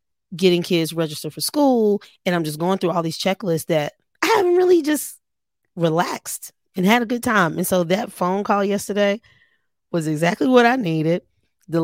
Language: English